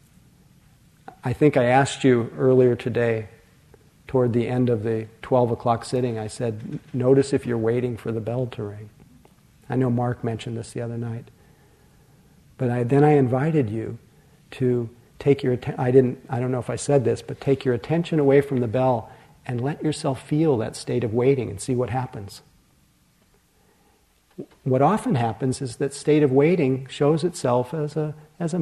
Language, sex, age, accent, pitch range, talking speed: English, male, 50-69, American, 120-145 Hz, 175 wpm